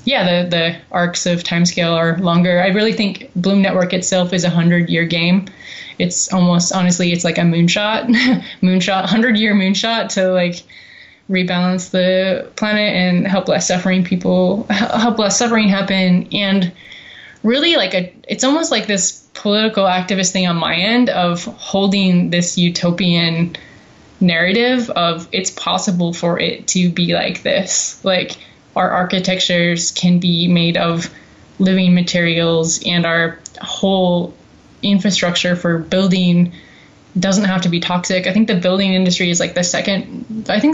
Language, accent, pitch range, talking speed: English, American, 175-210 Hz, 150 wpm